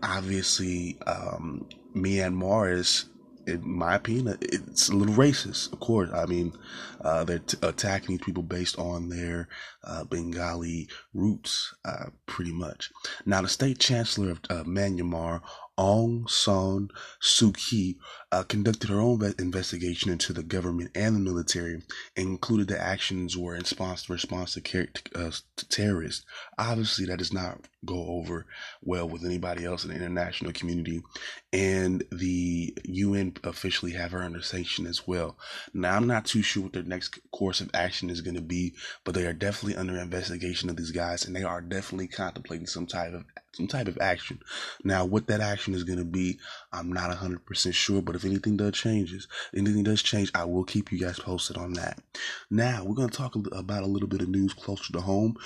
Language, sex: English, male